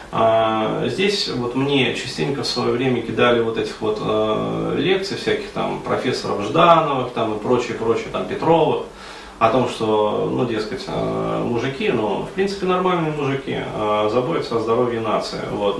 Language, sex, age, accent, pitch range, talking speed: Russian, male, 30-49, native, 110-135 Hz, 155 wpm